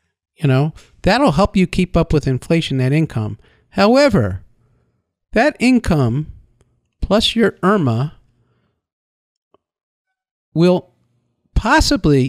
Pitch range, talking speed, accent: 155-220 Hz, 95 wpm, American